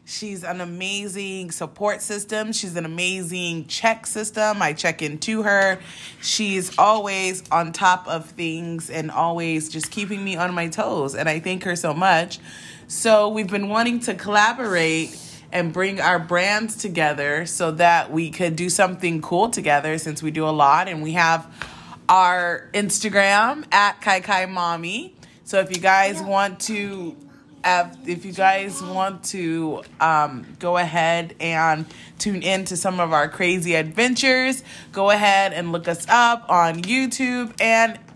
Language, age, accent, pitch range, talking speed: English, 20-39, American, 170-210 Hz, 155 wpm